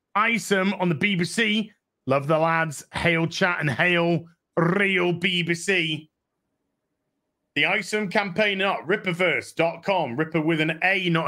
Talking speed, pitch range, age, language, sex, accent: 120 wpm, 145-185 Hz, 30-49, English, male, British